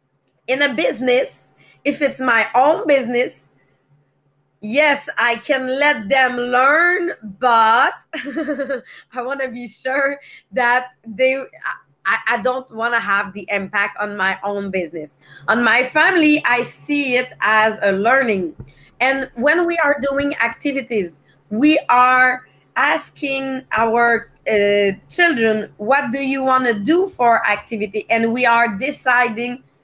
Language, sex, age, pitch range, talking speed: English, female, 30-49, 200-270 Hz, 135 wpm